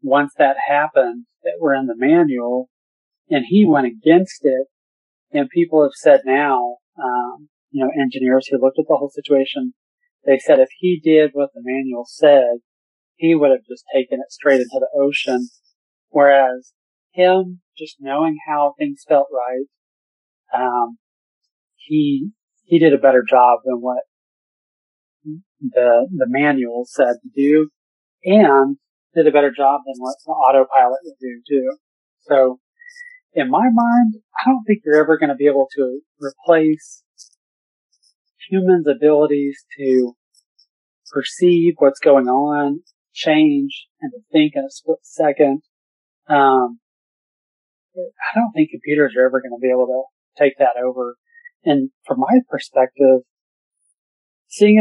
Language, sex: English, male